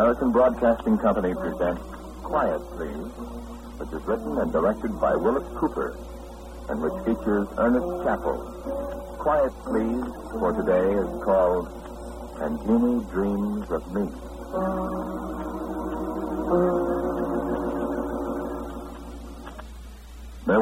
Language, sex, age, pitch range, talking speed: English, male, 60-79, 65-95 Hz, 90 wpm